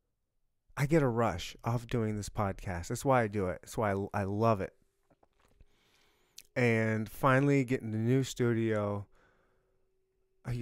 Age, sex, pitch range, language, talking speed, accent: 30-49, male, 100-125 Hz, English, 145 wpm, American